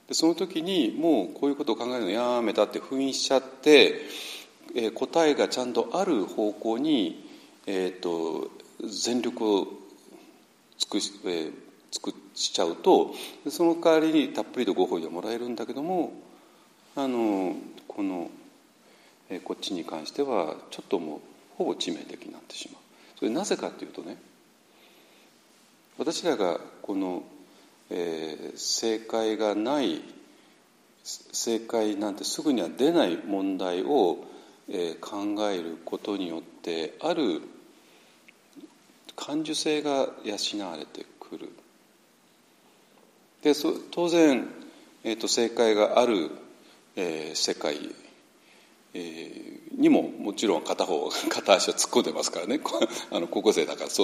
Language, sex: Japanese, male